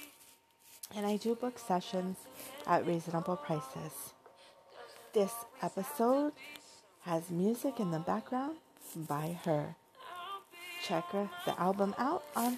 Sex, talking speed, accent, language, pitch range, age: female, 105 wpm, American, English, 175-255 Hz, 30-49